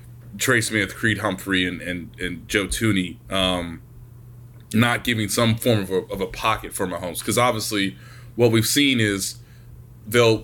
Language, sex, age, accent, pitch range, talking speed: English, male, 20-39, American, 105-120 Hz, 160 wpm